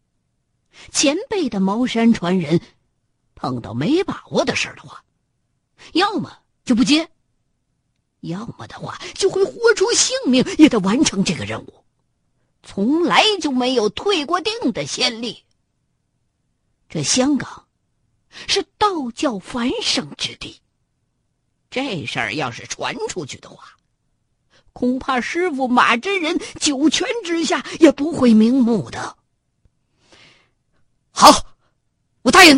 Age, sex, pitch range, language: 50-69, female, 225-350 Hz, Chinese